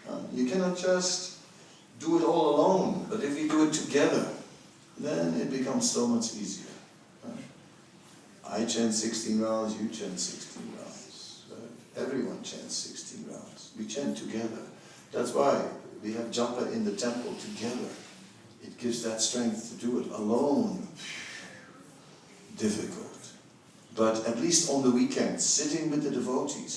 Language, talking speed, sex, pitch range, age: English, 145 wpm, male, 115-185 Hz, 60-79